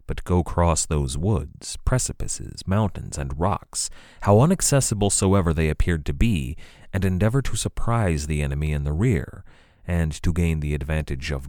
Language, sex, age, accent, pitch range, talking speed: English, male, 30-49, American, 75-105 Hz, 160 wpm